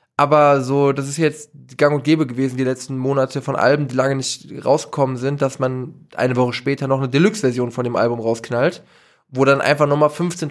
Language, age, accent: German, 20-39, German